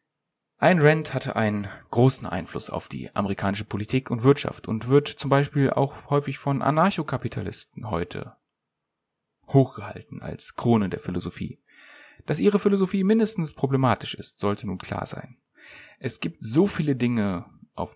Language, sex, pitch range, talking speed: German, male, 100-135 Hz, 140 wpm